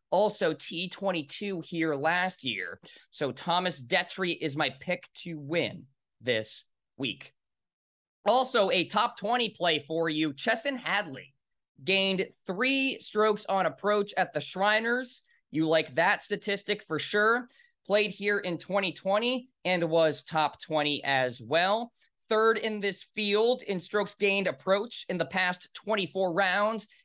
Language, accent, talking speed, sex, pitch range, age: English, American, 135 wpm, male, 155-215 Hz, 20-39